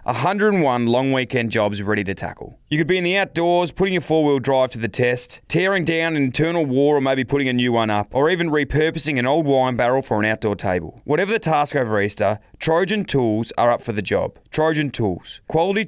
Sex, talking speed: male, 220 wpm